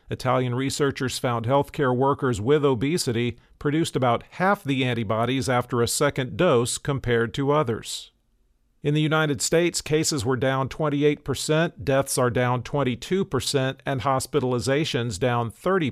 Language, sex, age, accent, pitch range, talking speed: English, male, 50-69, American, 125-145 Hz, 140 wpm